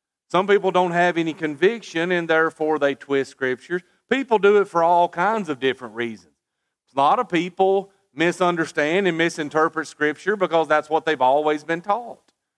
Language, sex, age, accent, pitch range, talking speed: English, male, 40-59, American, 145-185 Hz, 165 wpm